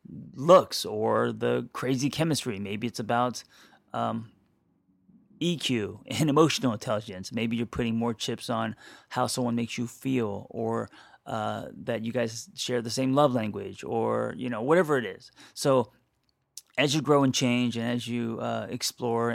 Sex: male